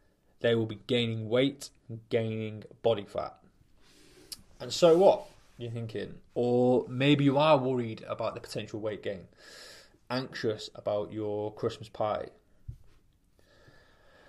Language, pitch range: English, 110-140 Hz